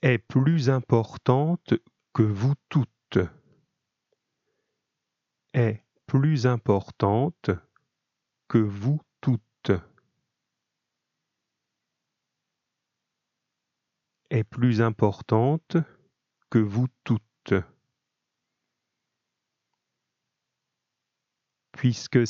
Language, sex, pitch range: French, male, 105-135 Hz